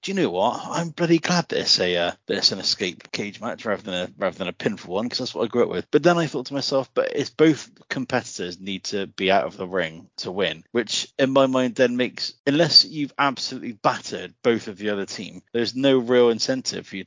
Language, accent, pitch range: English, British, 100-135 Hz